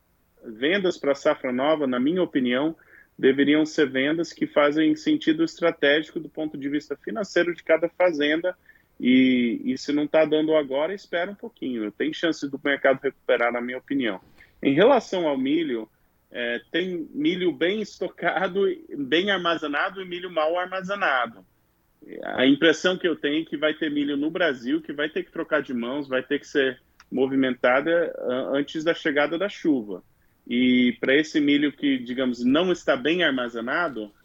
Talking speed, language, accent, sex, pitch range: 165 wpm, Portuguese, Brazilian, male, 130-190 Hz